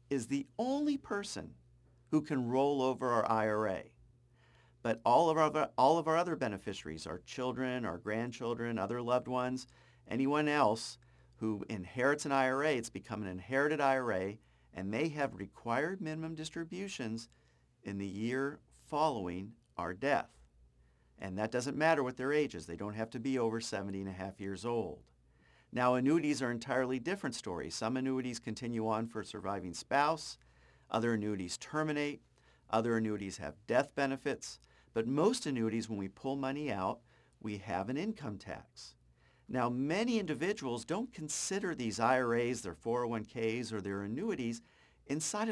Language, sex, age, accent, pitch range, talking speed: English, male, 50-69, American, 100-140 Hz, 150 wpm